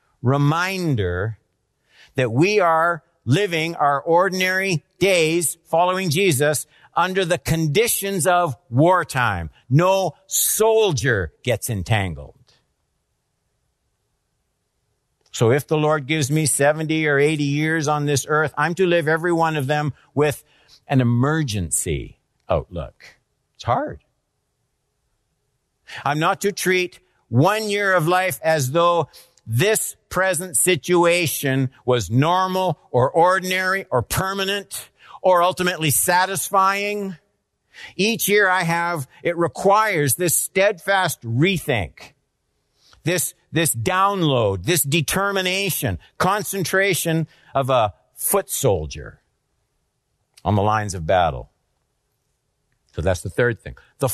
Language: English